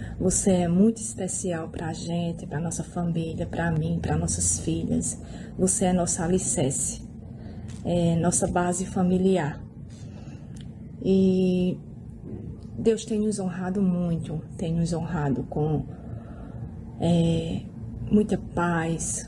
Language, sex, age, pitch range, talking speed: Portuguese, female, 20-39, 155-190 Hz, 110 wpm